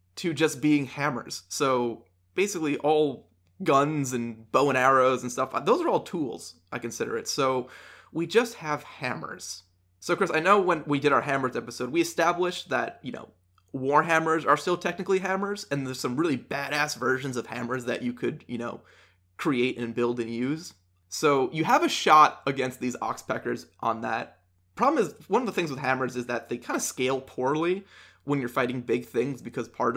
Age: 20-39